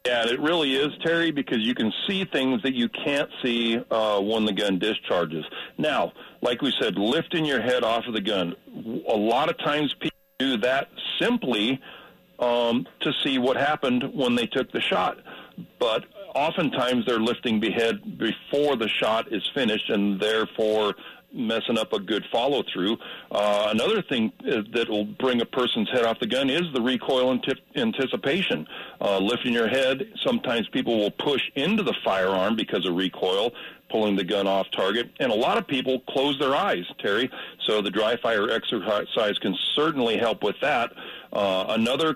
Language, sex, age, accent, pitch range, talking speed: English, male, 50-69, American, 110-145 Hz, 170 wpm